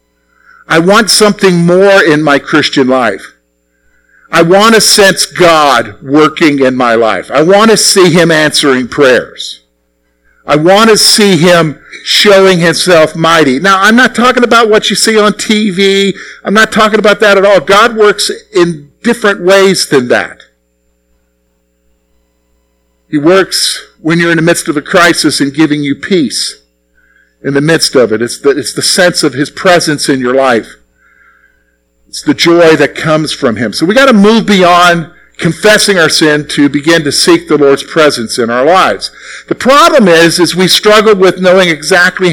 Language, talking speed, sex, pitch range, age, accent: English, 170 wpm, male, 120-195 Hz, 50-69, American